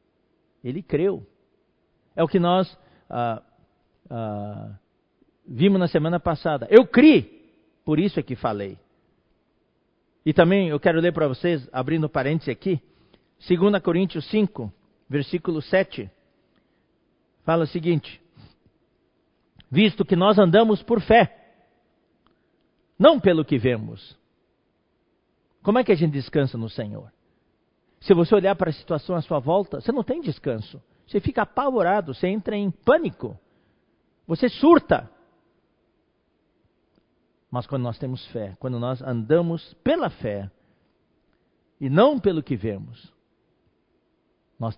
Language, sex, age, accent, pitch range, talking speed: Portuguese, male, 50-69, Brazilian, 130-185 Hz, 125 wpm